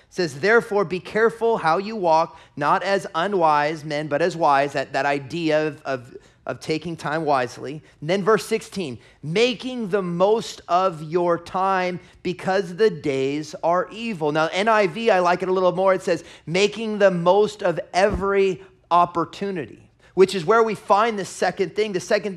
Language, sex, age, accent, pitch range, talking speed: English, male, 30-49, American, 175-220 Hz, 175 wpm